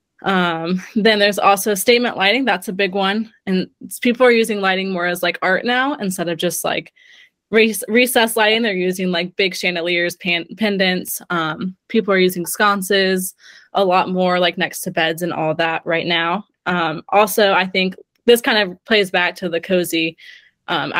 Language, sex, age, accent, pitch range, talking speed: English, female, 20-39, American, 175-205 Hz, 175 wpm